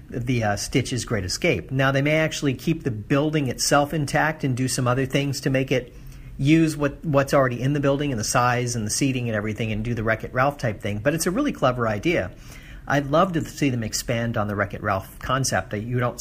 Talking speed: 230 wpm